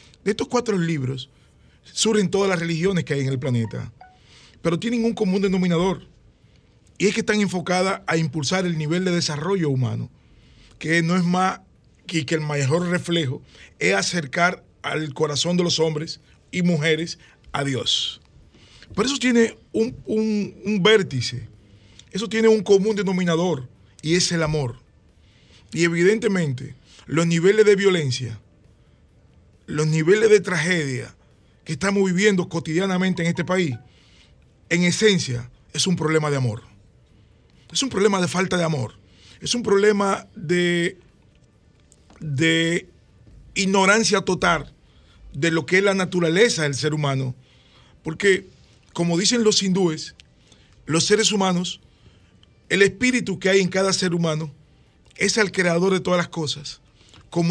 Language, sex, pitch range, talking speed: Spanish, male, 145-195 Hz, 145 wpm